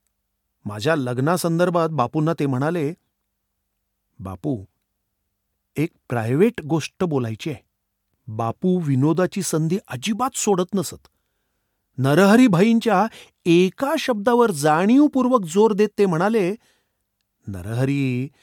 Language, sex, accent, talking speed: Marathi, male, native, 75 wpm